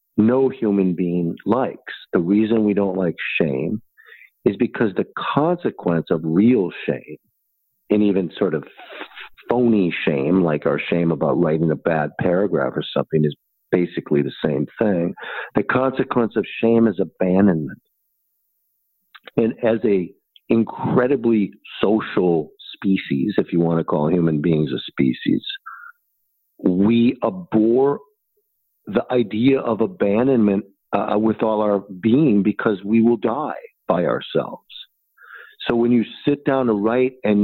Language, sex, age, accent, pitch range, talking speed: English, male, 50-69, American, 90-115 Hz, 135 wpm